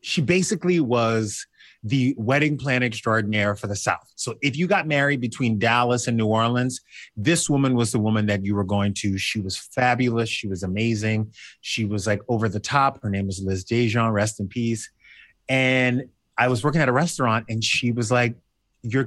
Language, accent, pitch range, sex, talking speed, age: English, American, 110-140 Hz, male, 195 wpm, 30-49